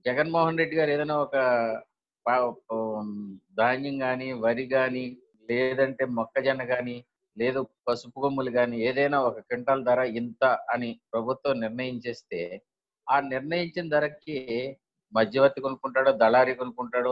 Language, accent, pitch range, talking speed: Telugu, native, 115-140 Hz, 110 wpm